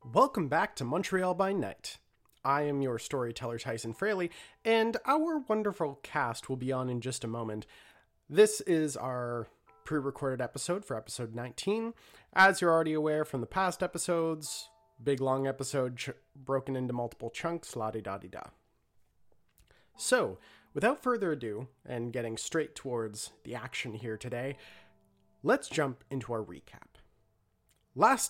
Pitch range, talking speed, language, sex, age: 120-165 Hz, 140 wpm, English, male, 30-49